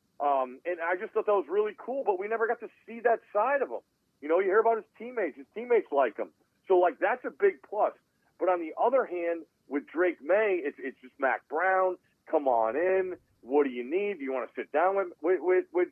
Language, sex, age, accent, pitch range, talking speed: English, male, 40-59, American, 140-200 Hz, 250 wpm